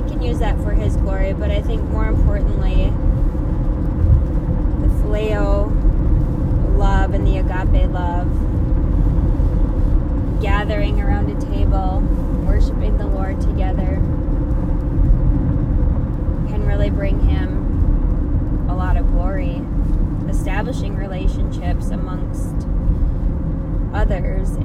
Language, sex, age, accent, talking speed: English, female, 20-39, American, 95 wpm